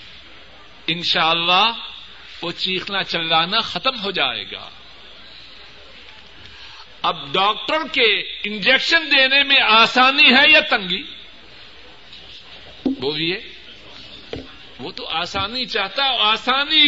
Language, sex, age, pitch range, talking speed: Urdu, male, 60-79, 195-285 Hz, 95 wpm